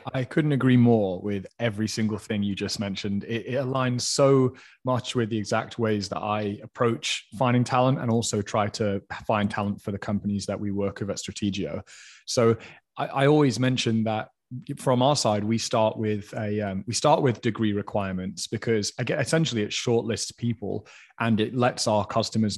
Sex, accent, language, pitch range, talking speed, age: male, British, English, 105-130 Hz, 185 wpm, 20-39